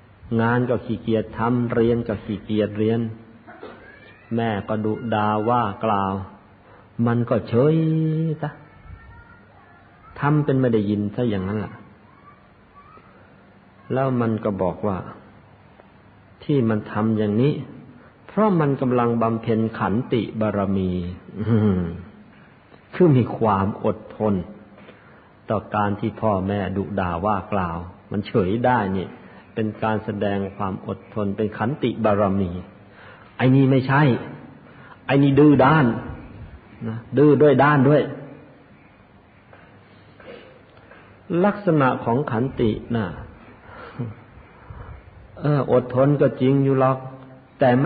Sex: male